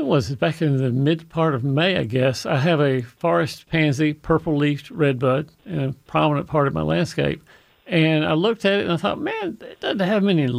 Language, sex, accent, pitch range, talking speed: English, male, American, 140-165 Hz, 210 wpm